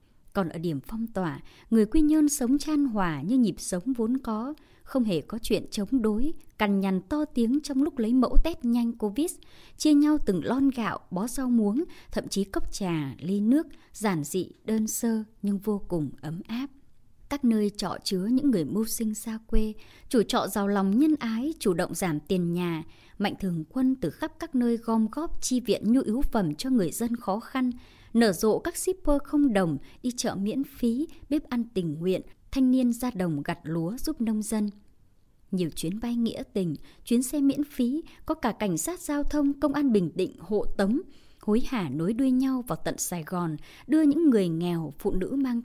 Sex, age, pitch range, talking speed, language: male, 20-39, 190-265 Hz, 205 wpm, Vietnamese